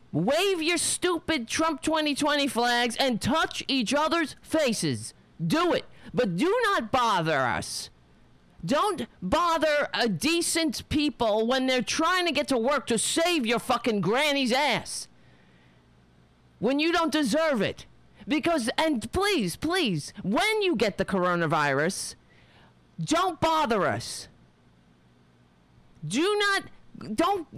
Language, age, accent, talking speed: English, 40-59, American, 120 wpm